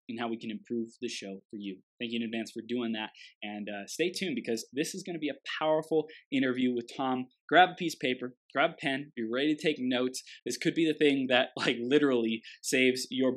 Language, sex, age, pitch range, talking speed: English, male, 20-39, 120-150 Hz, 240 wpm